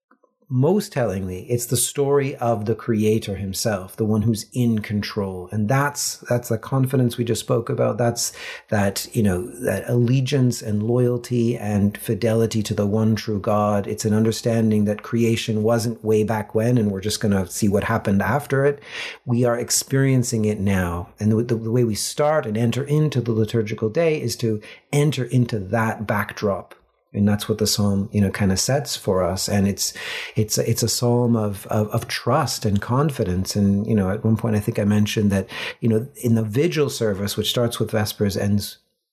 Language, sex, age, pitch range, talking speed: English, male, 40-59, 105-120 Hz, 195 wpm